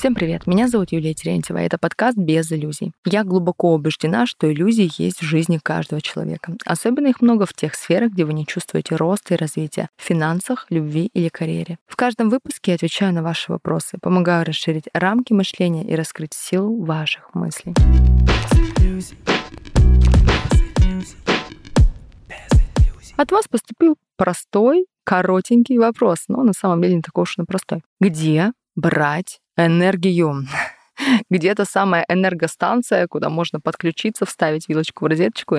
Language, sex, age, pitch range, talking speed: Russian, female, 20-39, 155-190 Hz, 140 wpm